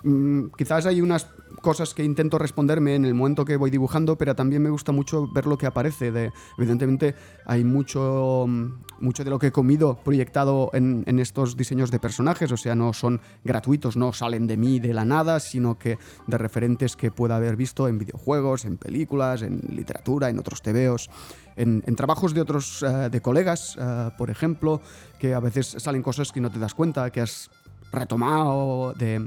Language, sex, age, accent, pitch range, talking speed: Spanish, male, 20-39, Spanish, 115-150 Hz, 185 wpm